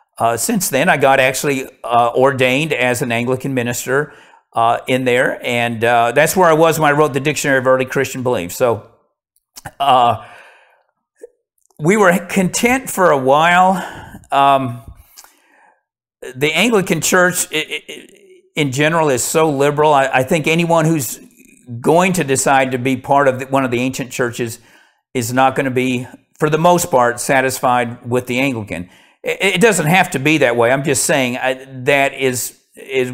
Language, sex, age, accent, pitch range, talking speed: English, male, 50-69, American, 125-155 Hz, 165 wpm